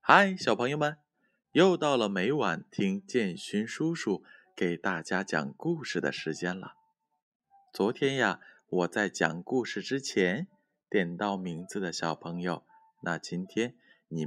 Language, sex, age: Chinese, male, 20-39